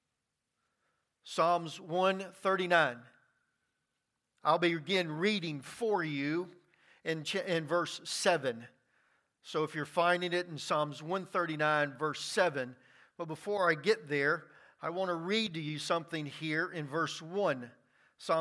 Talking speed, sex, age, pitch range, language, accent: 125 wpm, male, 50-69, 170-220 Hz, English, American